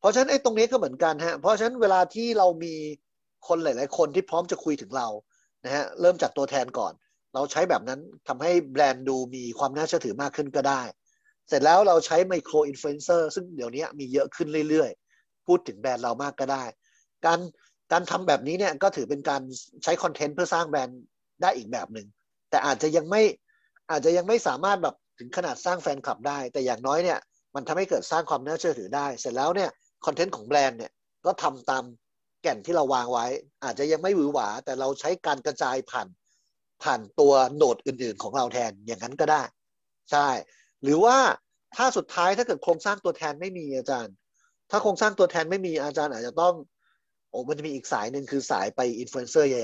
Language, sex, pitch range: Thai, male, 135-180 Hz